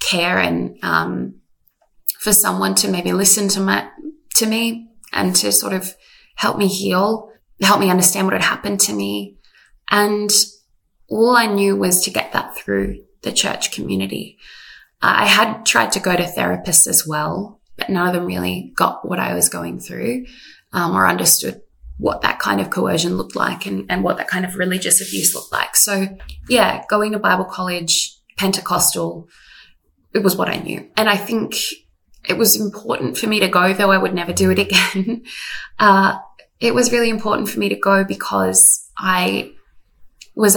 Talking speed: 175 wpm